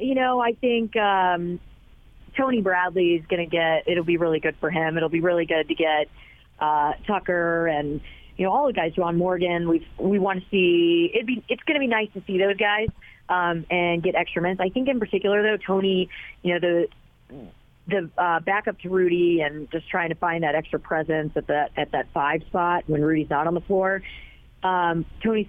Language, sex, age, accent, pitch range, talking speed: English, female, 30-49, American, 155-190 Hz, 215 wpm